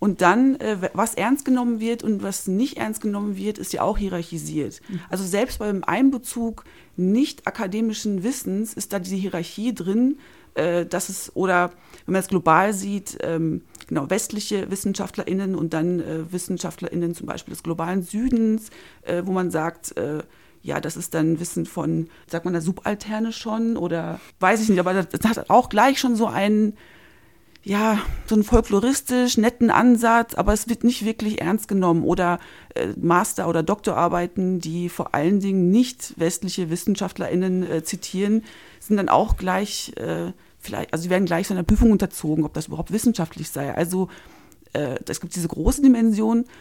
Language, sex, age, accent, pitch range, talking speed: German, female, 30-49, German, 175-220 Hz, 160 wpm